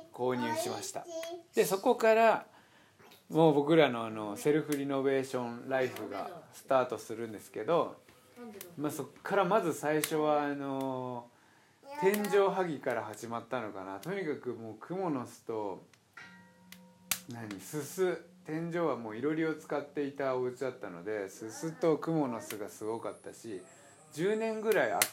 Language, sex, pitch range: Japanese, male, 130-185 Hz